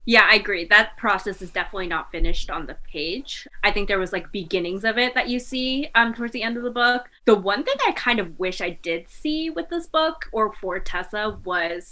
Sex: female